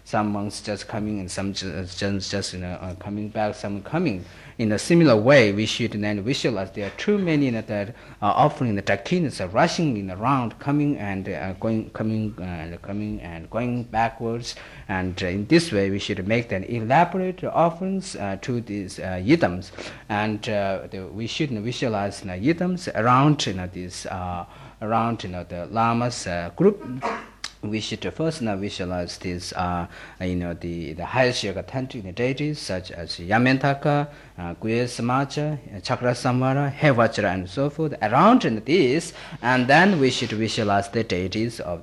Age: 50-69